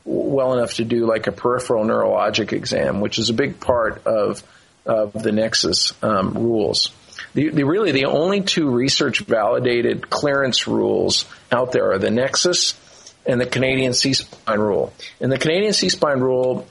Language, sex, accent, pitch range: English, male, American, 110-130 Hz